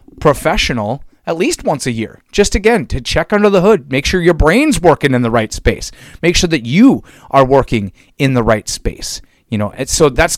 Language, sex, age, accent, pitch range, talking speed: English, male, 30-49, American, 115-145 Hz, 215 wpm